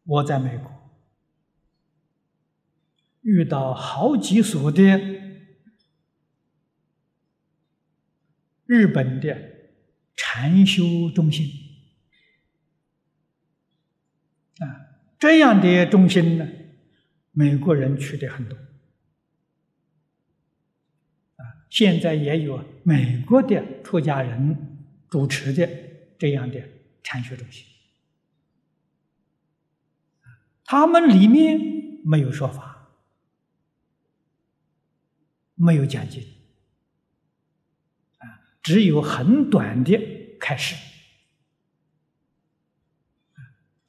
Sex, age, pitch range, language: male, 60-79, 145-190 Hz, Chinese